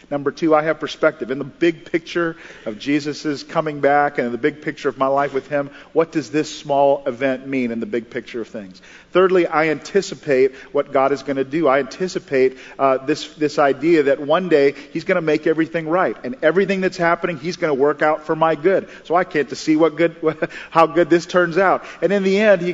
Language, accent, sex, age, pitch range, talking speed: English, American, male, 40-59, 135-170 Hz, 230 wpm